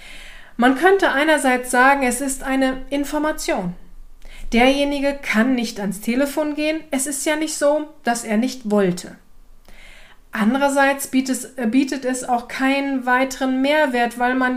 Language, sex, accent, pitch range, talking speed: German, female, German, 225-285 Hz, 130 wpm